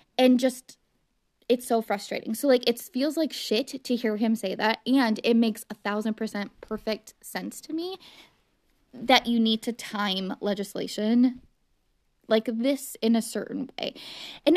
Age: 20-39